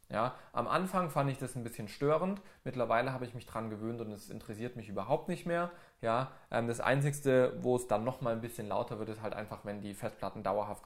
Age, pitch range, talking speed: 20-39, 110-140 Hz, 225 wpm